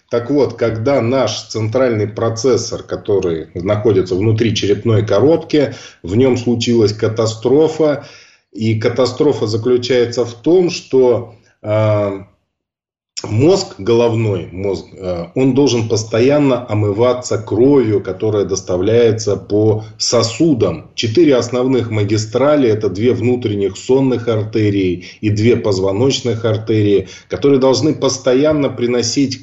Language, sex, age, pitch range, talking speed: Russian, male, 20-39, 105-125 Hz, 100 wpm